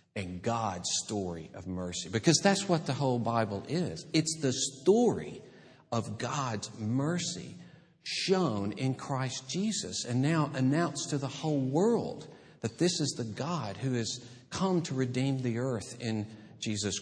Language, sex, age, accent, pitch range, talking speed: English, male, 50-69, American, 110-150 Hz, 150 wpm